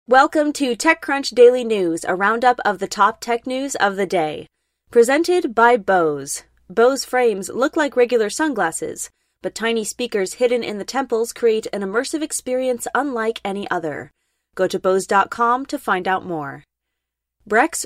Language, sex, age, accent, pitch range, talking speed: English, female, 20-39, American, 195-250 Hz, 155 wpm